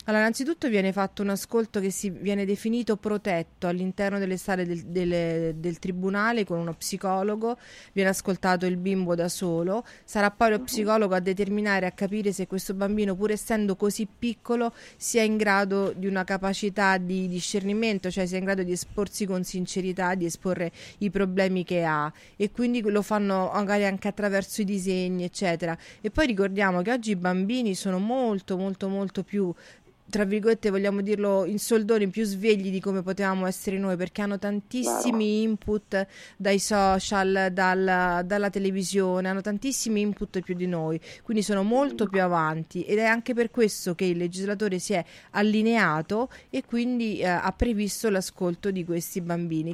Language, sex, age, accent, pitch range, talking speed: Italian, female, 30-49, native, 185-215 Hz, 165 wpm